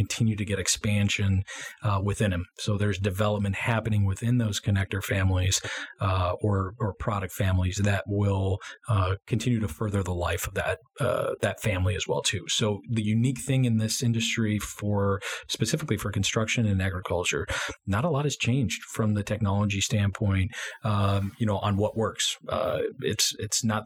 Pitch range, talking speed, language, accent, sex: 100-115 Hz, 170 wpm, English, American, male